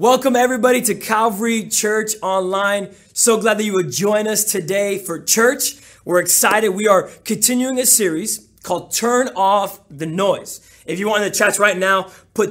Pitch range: 170-205 Hz